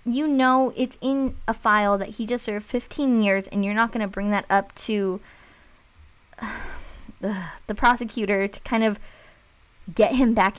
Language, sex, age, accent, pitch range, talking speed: English, female, 20-39, American, 185-220 Hz, 170 wpm